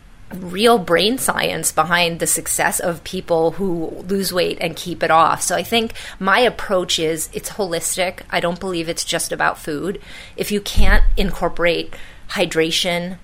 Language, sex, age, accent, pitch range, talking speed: English, female, 30-49, American, 160-185 Hz, 160 wpm